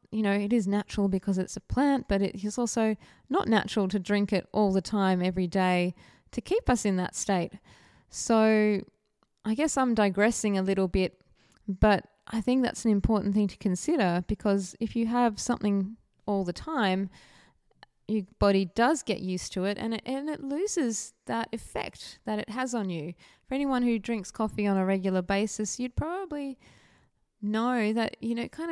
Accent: Australian